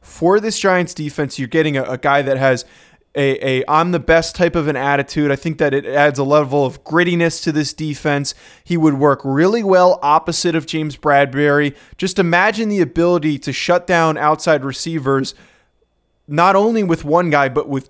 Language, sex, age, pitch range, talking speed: English, male, 20-39, 140-170 Hz, 185 wpm